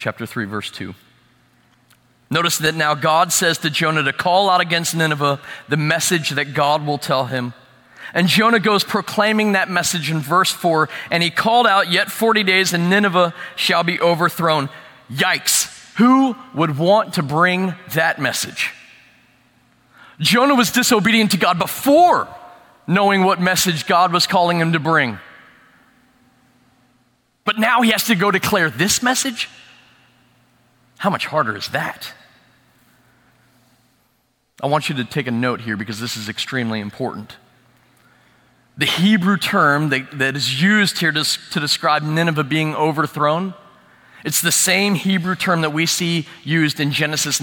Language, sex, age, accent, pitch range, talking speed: English, male, 30-49, American, 130-185 Hz, 150 wpm